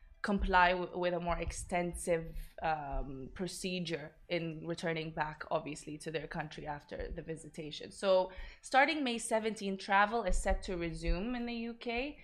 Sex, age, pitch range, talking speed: female, 20-39, 160-180 Hz, 140 wpm